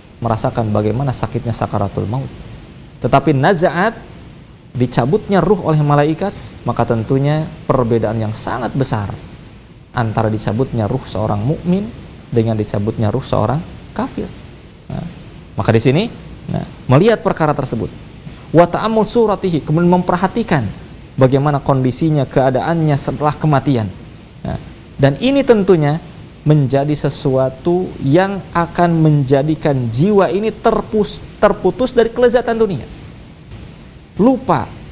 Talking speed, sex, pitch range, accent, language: 105 wpm, male, 130-190 Hz, native, Indonesian